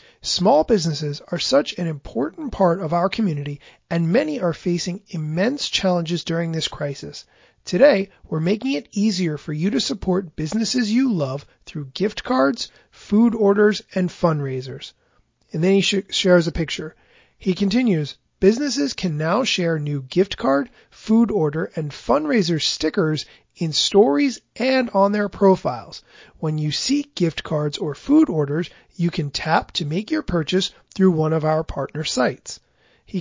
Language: English